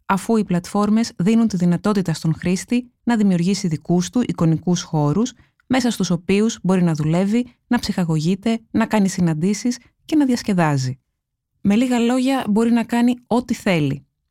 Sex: female